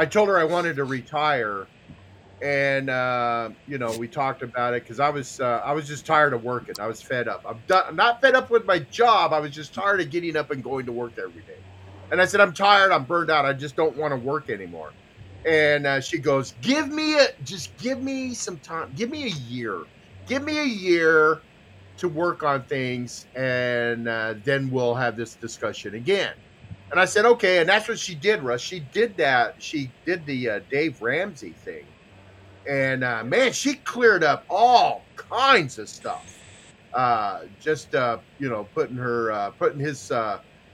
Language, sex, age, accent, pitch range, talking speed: English, male, 40-59, American, 120-185 Hz, 205 wpm